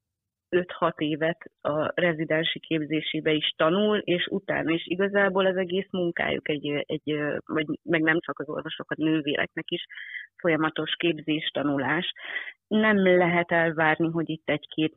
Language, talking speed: Hungarian, 130 wpm